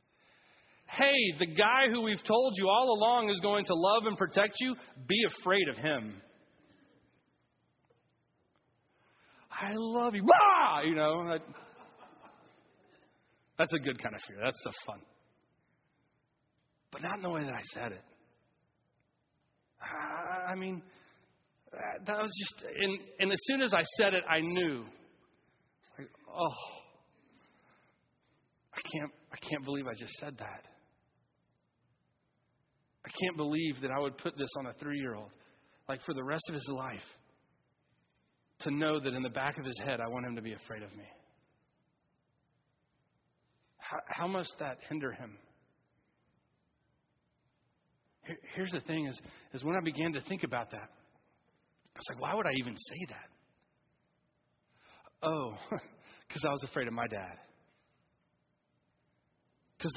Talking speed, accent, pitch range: 140 wpm, American, 125-190 Hz